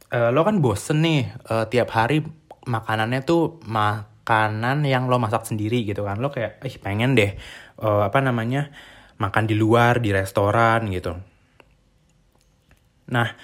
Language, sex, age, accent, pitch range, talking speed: Indonesian, male, 20-39, native, 105-135 Hz, 145 wpm